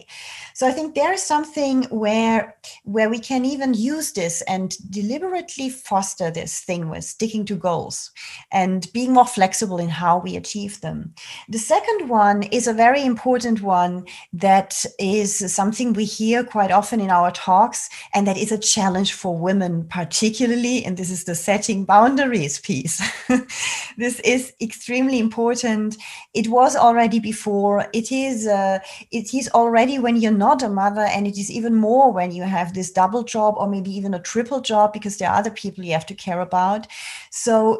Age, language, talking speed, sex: 30-49, English, 175 wpm, female